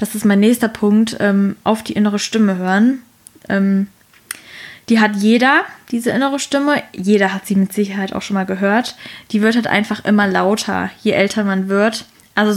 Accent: German